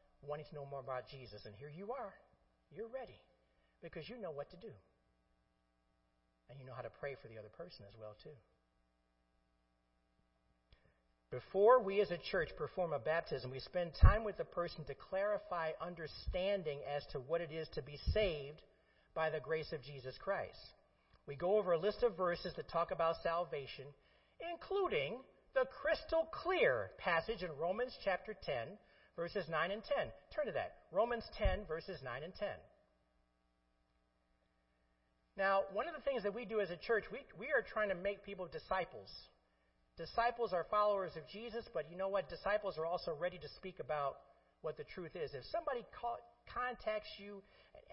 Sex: male